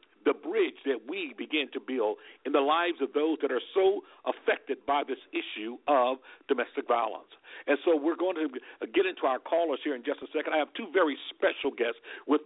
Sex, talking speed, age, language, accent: male, 205 wpm, 50-69, English, American